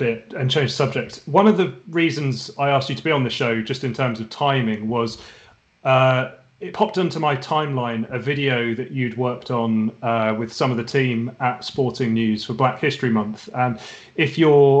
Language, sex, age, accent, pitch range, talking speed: English, male, 30-49, British, 120-145 Hz, 205 wpm